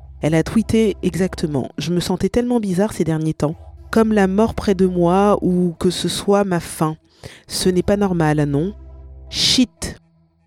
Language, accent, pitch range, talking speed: French, French, 135-185 Hz, 185 wpm